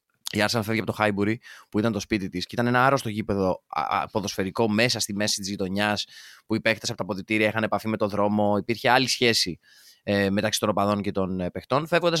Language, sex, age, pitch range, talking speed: Greek, male, 20-39, 105-135 Hz, 225 wpm